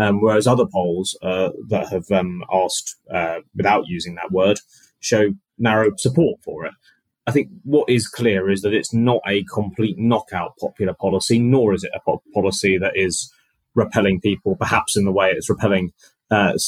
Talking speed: 180 wpm